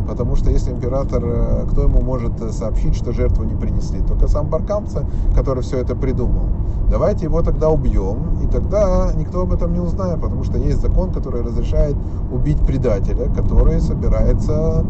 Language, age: Russian, 30-49